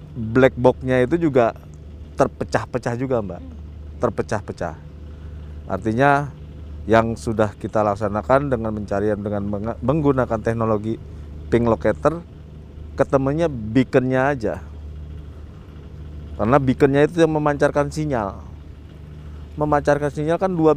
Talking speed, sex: 95 wpm, male